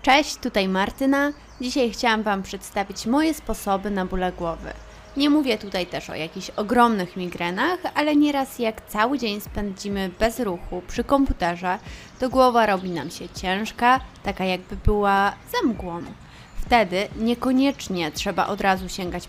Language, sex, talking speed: Polish, female, 145 wpm